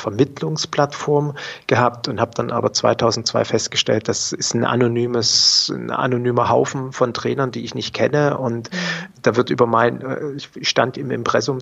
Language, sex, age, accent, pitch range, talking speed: German, male, 40-59, German, 115-135 Hz, 155 wpm